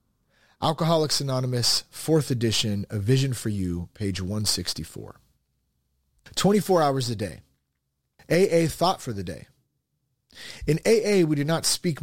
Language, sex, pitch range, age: English, male, 110-150 Hz, 30-49